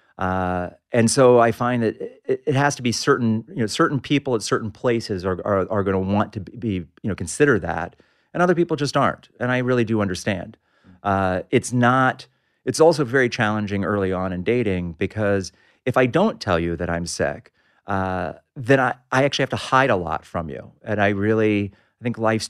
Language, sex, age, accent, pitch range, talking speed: English, male, 40-59, American, 95-125 Hz, 210 wpm